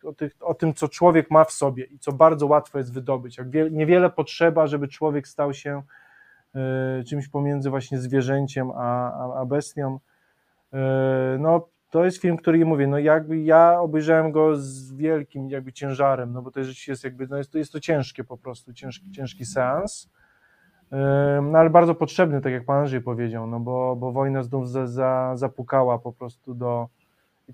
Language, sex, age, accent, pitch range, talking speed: Polish, male, 20-39, native, 135-160 Hz, 185 wpm